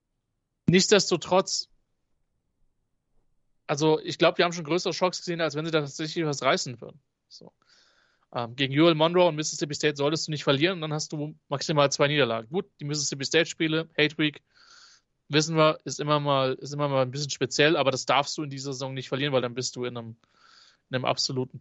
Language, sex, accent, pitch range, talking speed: German, male, German, 135-155 Hz, 200 wpm